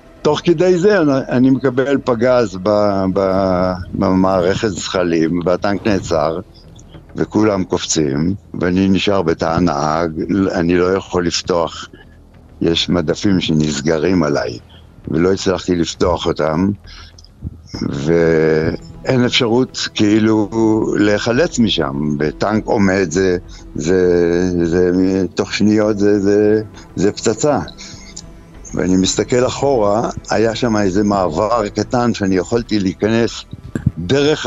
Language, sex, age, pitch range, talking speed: Hebrew, male, 60-79, 85-105 Hz, 105 wpm